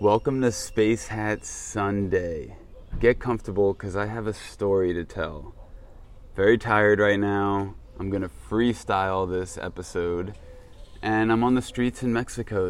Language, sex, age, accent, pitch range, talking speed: English, male, 20-39, American, 90-110 Hz, 140 wpm